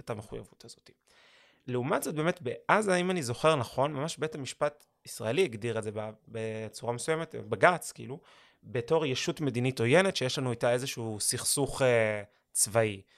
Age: 20-39